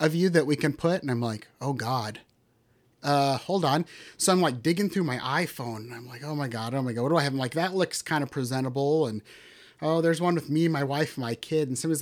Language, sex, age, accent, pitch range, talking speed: English, male, 30-49, American, 125-170 Hz, 265 wpm